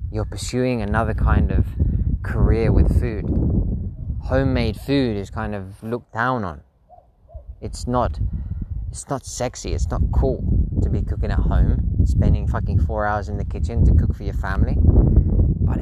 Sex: male